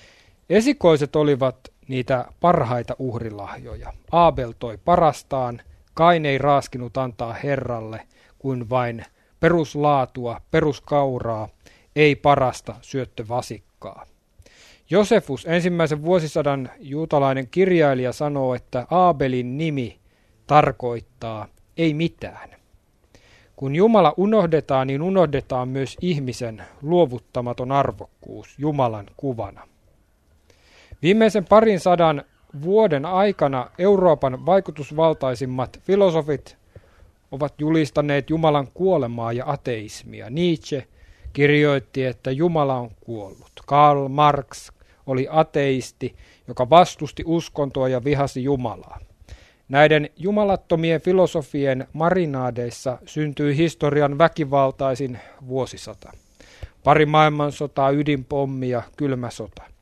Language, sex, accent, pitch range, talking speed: Finnish, male, native, 120-155 Hz, 85 wpm